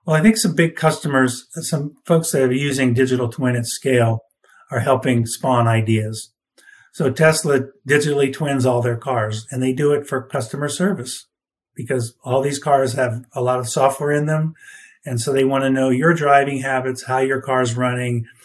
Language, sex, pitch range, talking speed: English, male, 120-145 Hz, 190 wpm